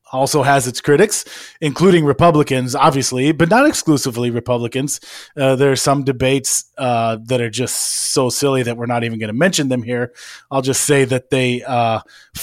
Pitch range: 125-145 Hz